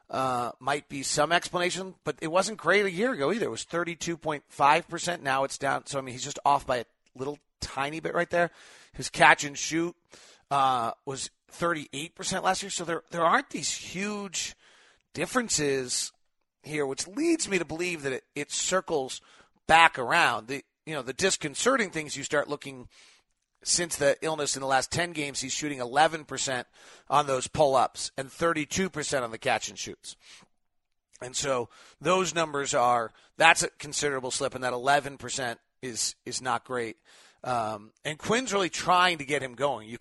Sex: male